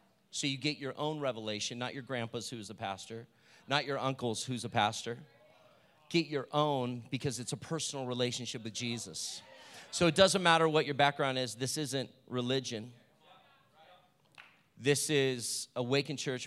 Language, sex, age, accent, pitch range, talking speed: English, male, 40-59, American, 120-145 Hz, 155 wpm